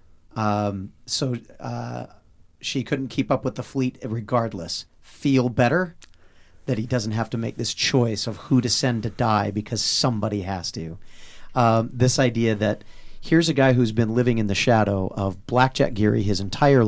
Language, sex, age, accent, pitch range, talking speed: English, male, 40-59, American, 105-125 Hz, 175 wpm